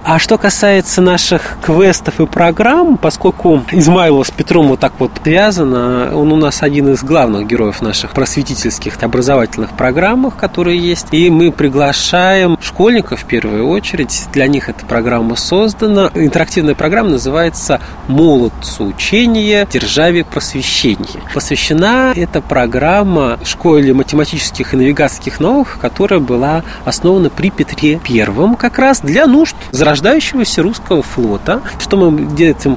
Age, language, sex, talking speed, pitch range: 20-39, Russian, male, 135 wpm, 135-180 Hz